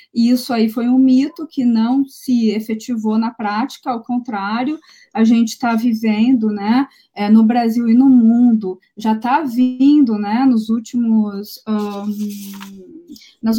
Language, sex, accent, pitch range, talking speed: Portuguese, female, Brazilian, 215-255 Hz, 135 wpm